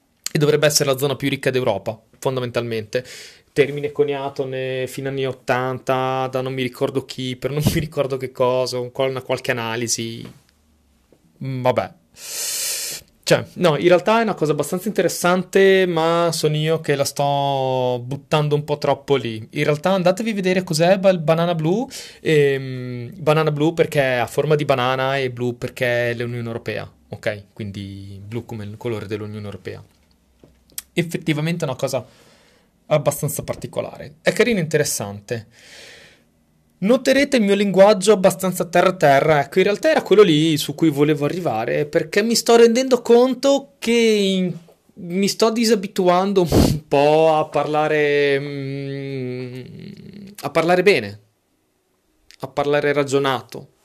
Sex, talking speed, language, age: male, 140 wpm, Italian, 30-49